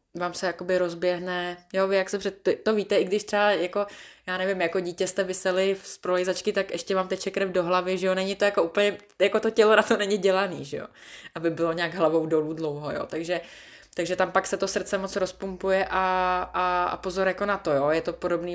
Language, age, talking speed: Czech, 20-39, 225 wpm